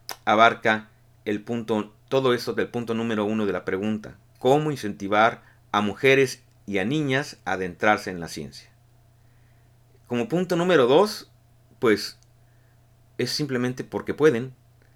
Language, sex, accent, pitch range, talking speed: Spanish, male, Mexican, 110-120 Hz, 130 wpm